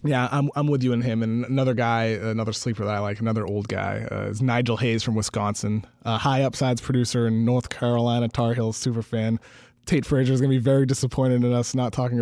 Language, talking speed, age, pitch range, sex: English, 230 wpm, 20-39, 115-150 Hz, male